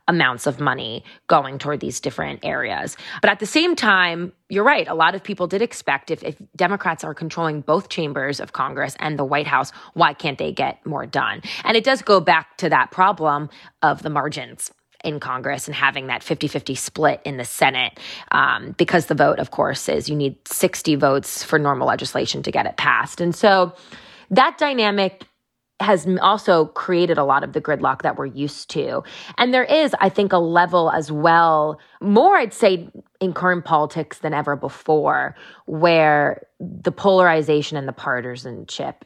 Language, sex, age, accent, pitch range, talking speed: English, female, 20-39, American, 145-180 Hz, 185 wpm